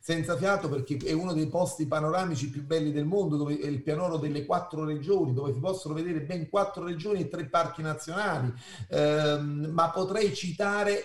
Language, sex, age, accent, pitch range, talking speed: Italian, male, 40-59, native, 155-200 Hz, 185 wpm